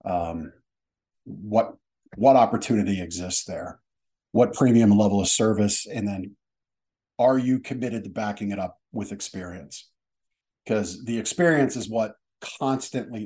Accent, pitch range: American, 95-110 Hz